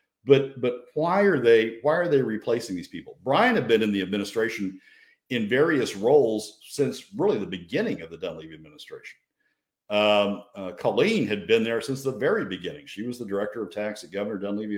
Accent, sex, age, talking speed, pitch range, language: American, male, 50-69, 190 wpm, 100-130 Hz, English